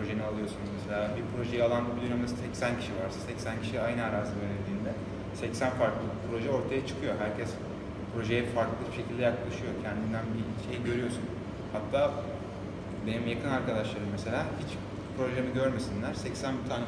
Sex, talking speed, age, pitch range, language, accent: male, 140 wpm, 30-49, 100-120 Hz, Turkish, native